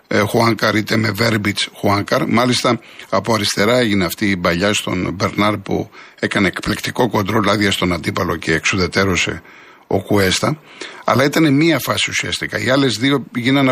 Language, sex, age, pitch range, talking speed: Greek, male, 60-79, 105-130 Hz, 150 wpm